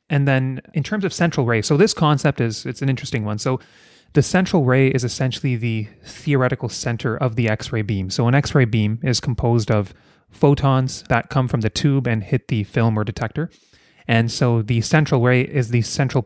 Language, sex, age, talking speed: English, male, 30-49, 205 wpm